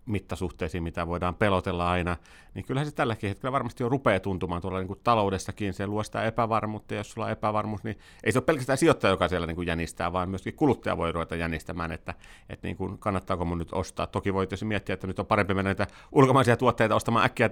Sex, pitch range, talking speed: male, 95-110 Hz, 210 wpm